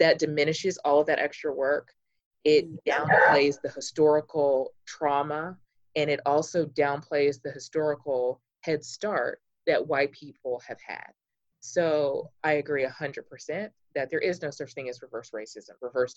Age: 20-39